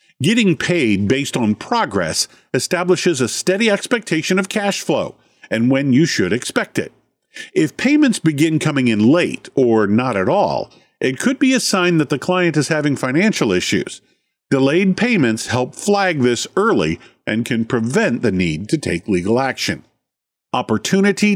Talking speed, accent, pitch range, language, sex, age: 155 wpm, American, 115-180 Hz, English, male, 50-69